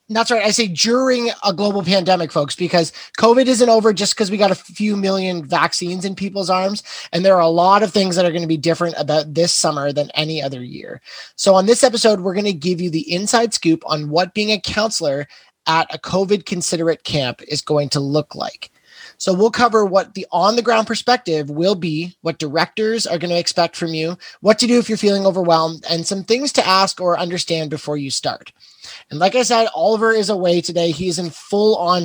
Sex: male